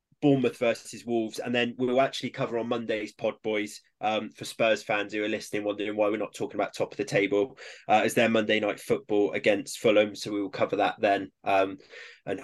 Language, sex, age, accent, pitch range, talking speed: English, male, 20-39, British, 105-130 Hz, 220 wpm